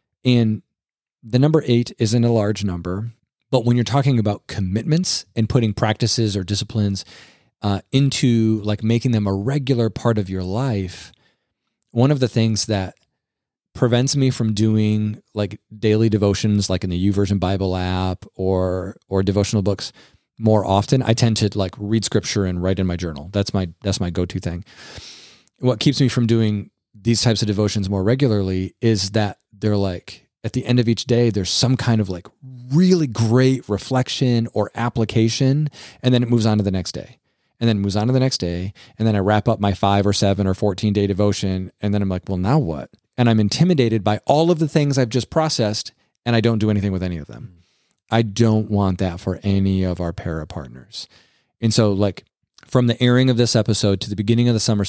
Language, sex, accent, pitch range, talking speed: English, male, American, 100-120 Hz, 205 wpm